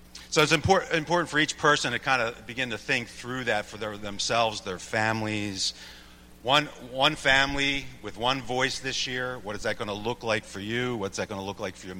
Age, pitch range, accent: 40-59, 95-120 Hz, American